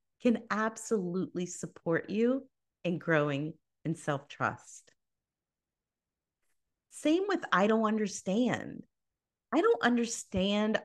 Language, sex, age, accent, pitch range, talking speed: English, female, 40-59, American, 175-260 Hz, 90 wpm